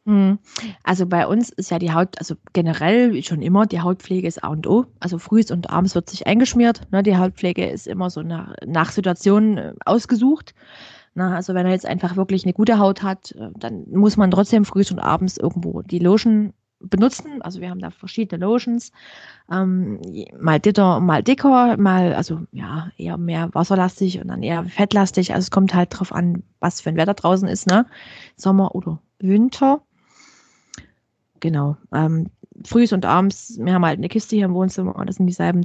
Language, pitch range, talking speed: German, 175-210 Hz, 190 wpm